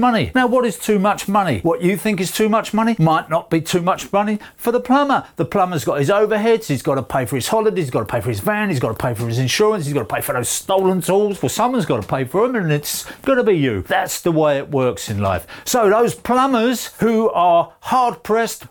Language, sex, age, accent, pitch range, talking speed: English, male, 40-59, British, 130-185 Hz, 265 wpm